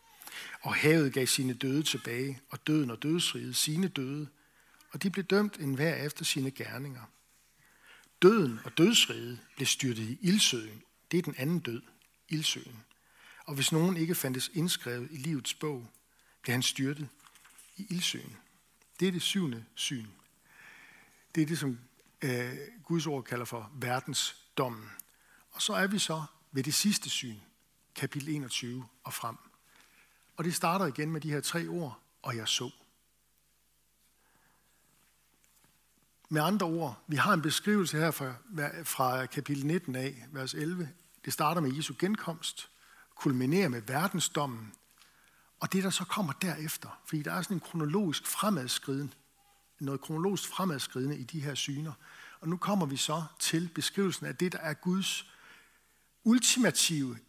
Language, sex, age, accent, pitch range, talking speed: Danish, male, 60-79, native, 130-170 Hz, 150 wpm